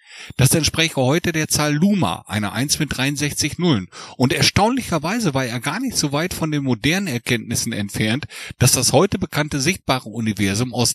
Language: German